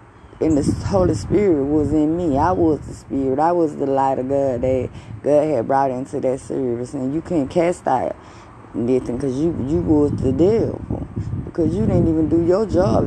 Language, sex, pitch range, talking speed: English, female, 120-150 Hz, 195 wpm